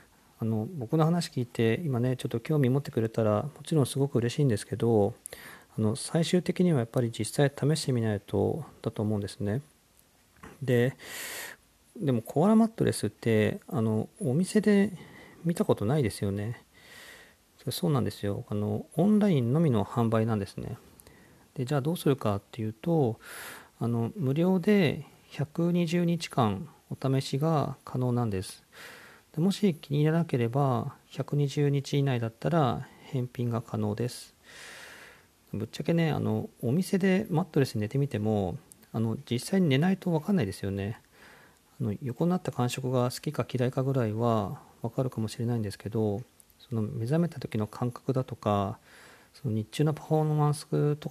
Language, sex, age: Japanese, male, 40-59